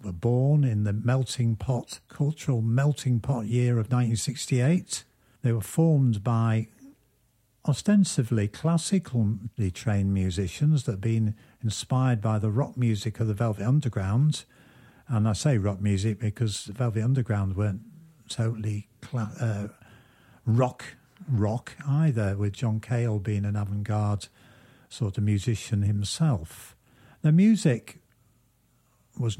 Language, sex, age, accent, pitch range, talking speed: English, male, 50-69, British, 110-135 Hz, 120 wpm